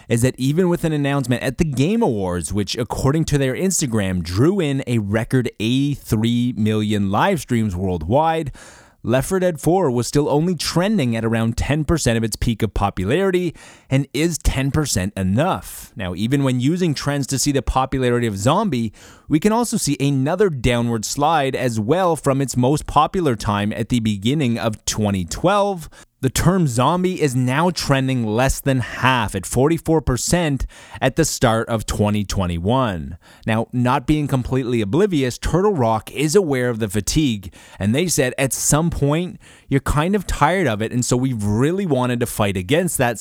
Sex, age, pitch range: male, 30-49, 110-145 Hz